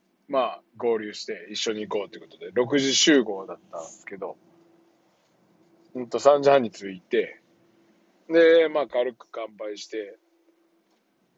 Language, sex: Japanese, male